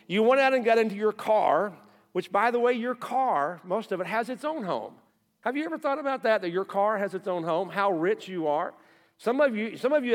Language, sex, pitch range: English, male, 180-240 Hz